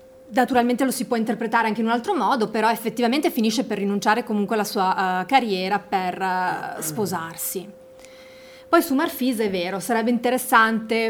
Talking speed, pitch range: 150 wpm, 205-245 Hz